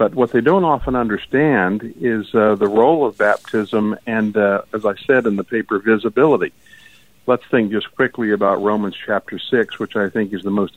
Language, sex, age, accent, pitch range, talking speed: English, male, 60-79, American, 95-115 Hz, 195 wpm